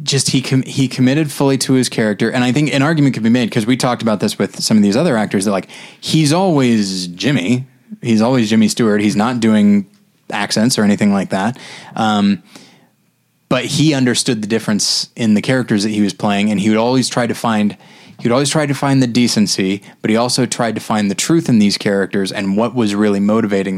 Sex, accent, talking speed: male, American, 220 wpm